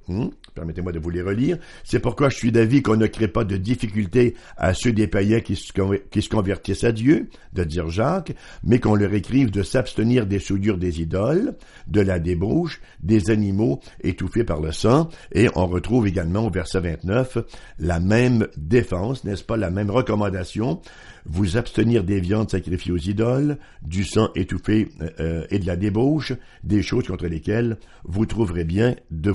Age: 60-79